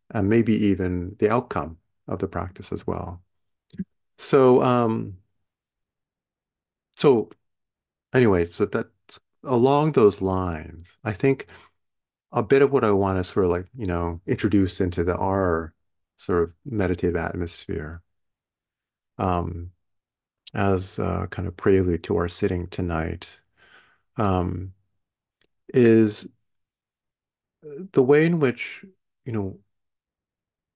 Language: English